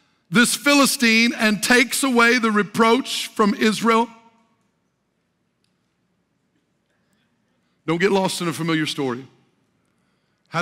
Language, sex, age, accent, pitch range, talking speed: English, male, 50-69, American, 160-220 Hz, 95 wpm